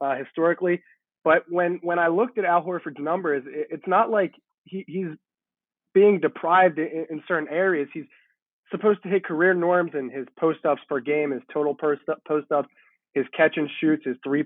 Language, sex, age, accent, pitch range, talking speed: English, male, 20-39, American, 150-185 Hz, 185 wpm